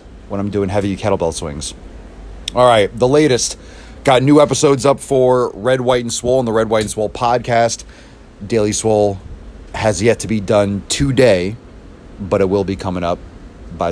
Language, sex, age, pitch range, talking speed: English, male, 30-49, 90-120 Hz, 175 wpm